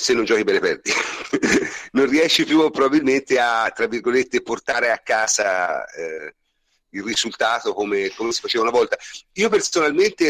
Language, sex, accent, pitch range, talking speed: Italian, male, native, 275-425 Hz, 150 wpm